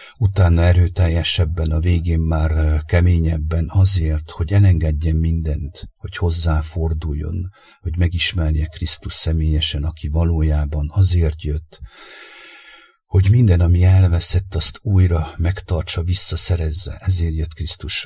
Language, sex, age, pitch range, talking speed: English, male, 60-79, 80-90 Hz, 105 wpm